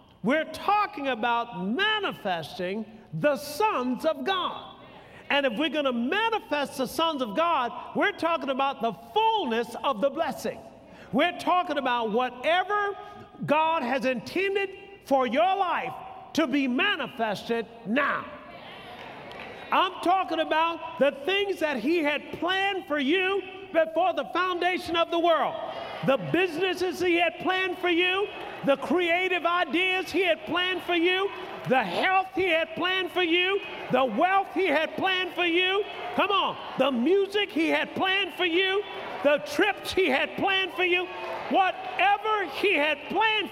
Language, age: English, 50-69